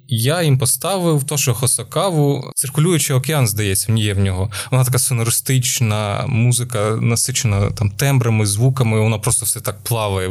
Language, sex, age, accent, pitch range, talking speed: Ukrainian, male, 20-39, native, 115-140 Hz, 145 wpm